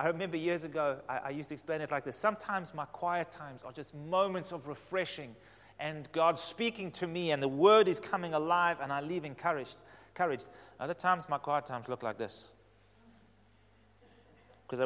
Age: 30-49